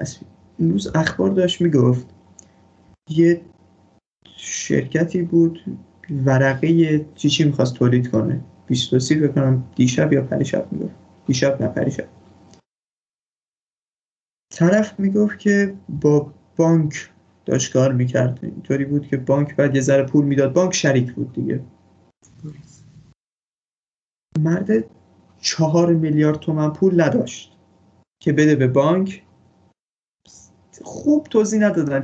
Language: Persian